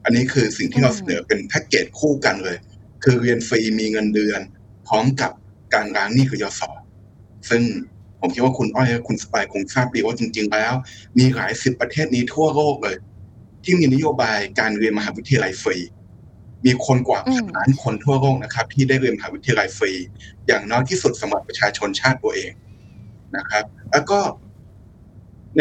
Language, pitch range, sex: Thai, 105-135 Hz, male